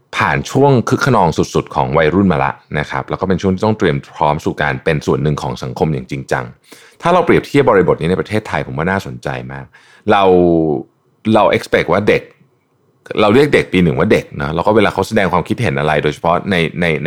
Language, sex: Thai, male